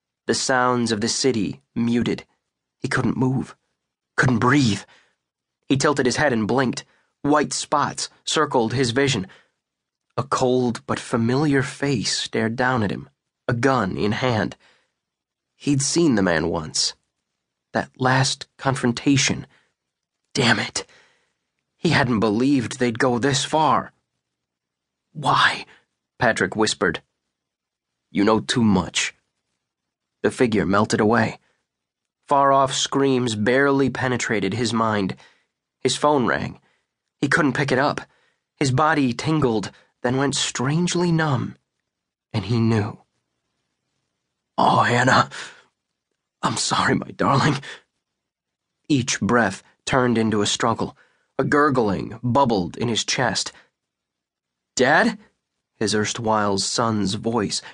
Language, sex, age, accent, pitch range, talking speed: English, male, 30-49, American, 110-140 Hz, 115 wpm